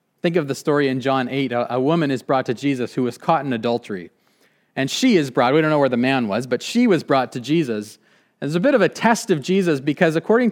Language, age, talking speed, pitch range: English, 30-49, 260 wpm, 130-185 Hz